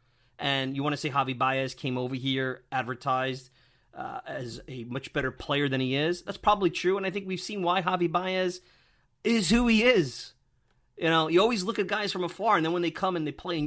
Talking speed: 235 wpm